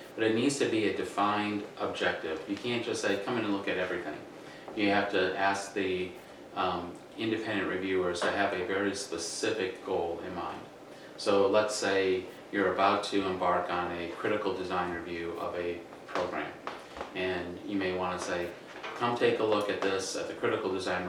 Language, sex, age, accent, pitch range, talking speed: English, male, 30-49, American, 90-100 Hz, 185 wpm